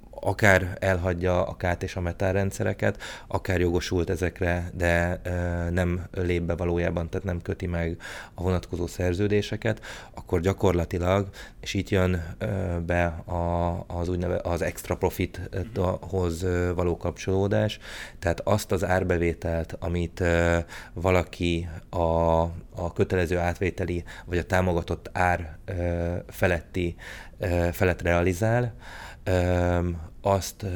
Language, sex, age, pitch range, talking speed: Hungarian, male, 30-49, 85-95 Hz, 120 wpm